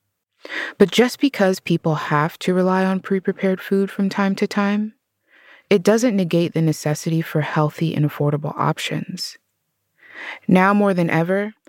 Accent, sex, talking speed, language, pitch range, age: American, female, 145 wpm, English, 155-195 Hz, 20-39